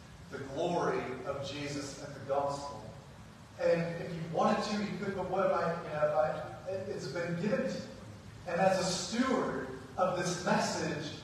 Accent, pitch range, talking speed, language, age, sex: American, 165-195 Hz, 175 wpm, English, 30-49, male